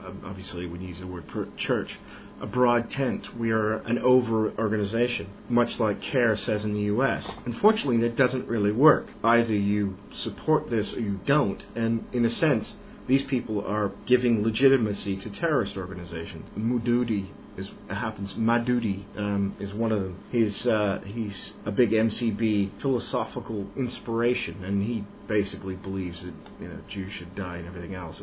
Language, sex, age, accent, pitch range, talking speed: English, male, 40-59, American, 100-120 Hz, 175 wpm